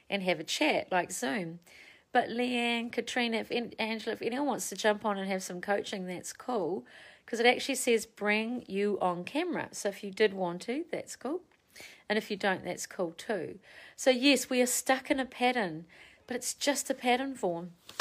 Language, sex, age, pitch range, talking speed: English, female, 40-59, 180-235 Hz, 195 wpm